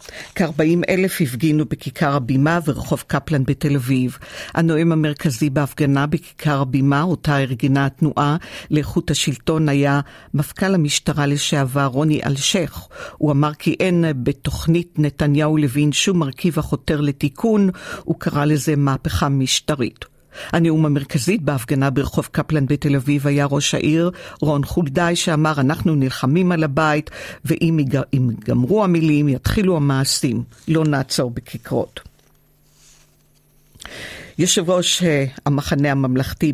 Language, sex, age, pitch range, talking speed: Hebrew, female, 50-69, 140-165 Hz, 110 wpm